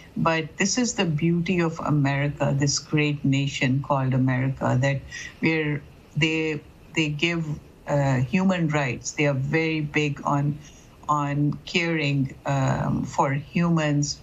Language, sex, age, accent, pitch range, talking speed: English, female, 70-89, Indian, 145-160 Hz, 125 wpm